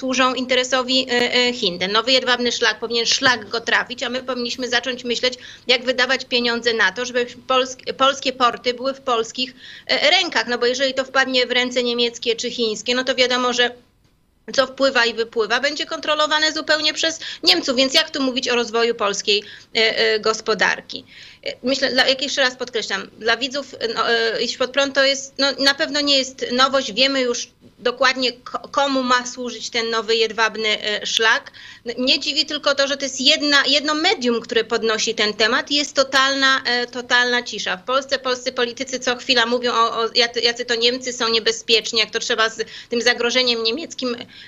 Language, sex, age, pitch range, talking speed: Polish, female, 30-49, 230-265 Hz, 165 wpm